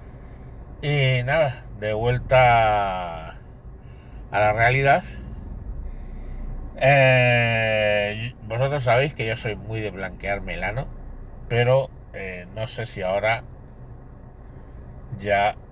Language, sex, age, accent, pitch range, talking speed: Spanish, male, 60-79, Spanish, 95-125 Hz, 90 wpm